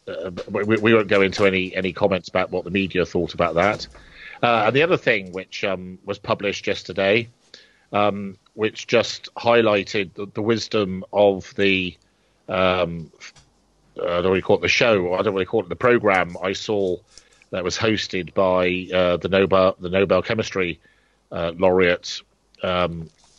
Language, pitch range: English, 90-110 Hz